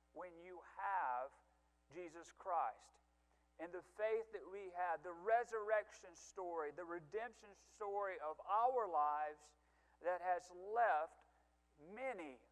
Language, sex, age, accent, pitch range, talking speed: English, male, 40-59, American, 170-225 Hz, 115 wpm